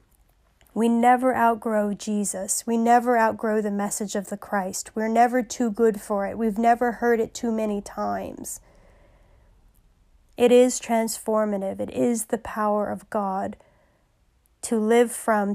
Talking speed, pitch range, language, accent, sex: 145 wpm, 205-230 Hz, English, American, female